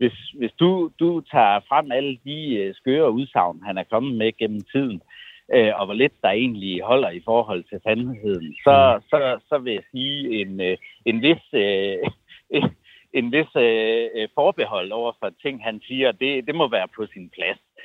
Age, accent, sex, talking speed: 60-79, native, male, 180 wpm